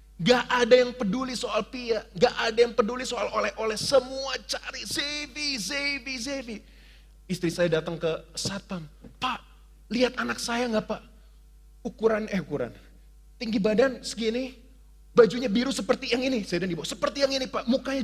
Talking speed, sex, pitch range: 155 wpm, male, 200-255 Hz